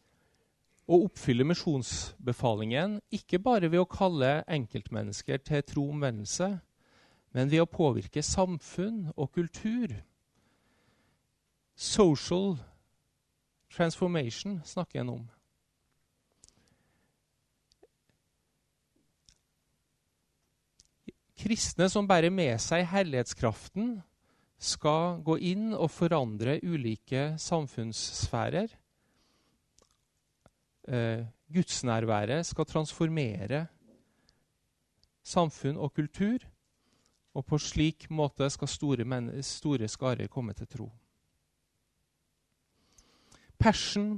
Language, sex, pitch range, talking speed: Danish, male, 115-170 Hz, 75 wpm